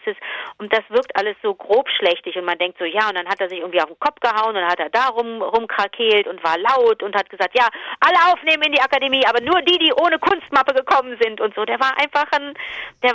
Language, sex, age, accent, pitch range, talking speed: German, female, 40-59, German, 195-275 Hz, 255 wpm